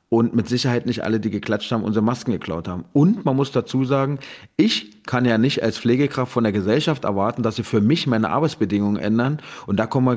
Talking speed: 225 wpm